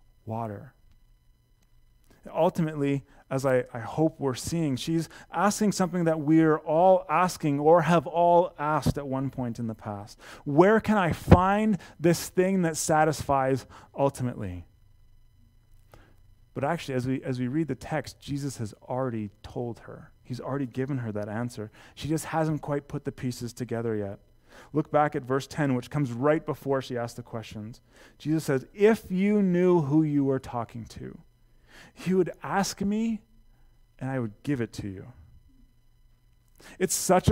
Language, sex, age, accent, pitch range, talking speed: English, male, 30-49, American, 120-185 Hz, 160 wpm